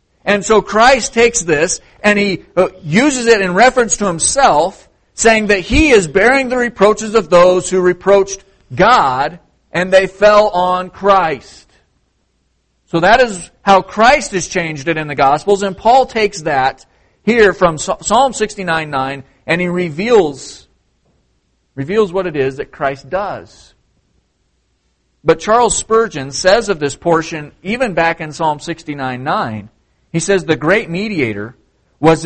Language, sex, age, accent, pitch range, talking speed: English, male, 50-69, American, 115-190 Hz, 145 wpm